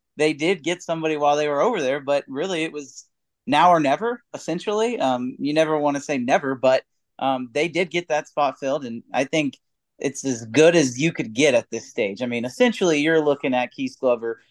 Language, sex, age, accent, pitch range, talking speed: English, male, 30-49, American, 125-155 Hz, 220 wpm